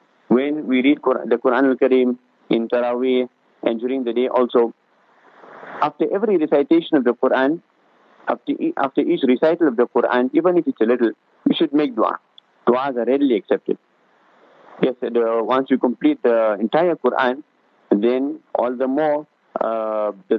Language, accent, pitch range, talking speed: English, Indian, 115-140 Hz, 155 wpm